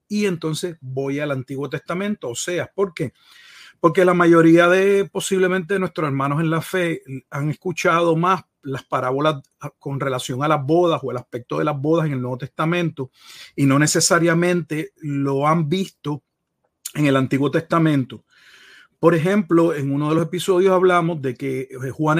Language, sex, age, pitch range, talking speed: Spanish, male, 40-59, 140-175 Hz, 165 wpm